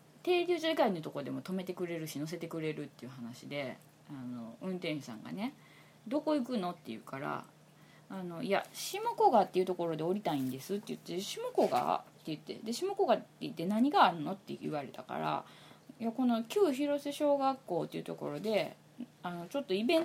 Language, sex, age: Japanese, female, 20-39